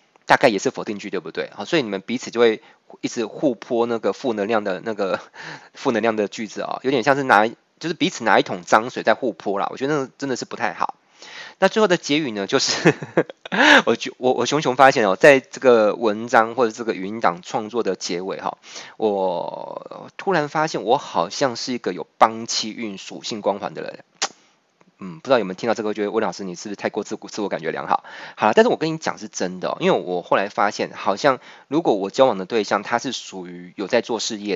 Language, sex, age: Chinese, male, 20-39